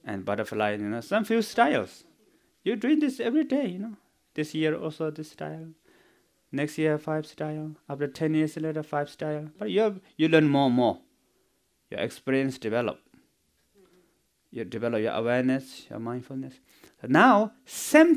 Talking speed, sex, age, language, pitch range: 160 wpm, male, 30-49, English, 130-220 Hz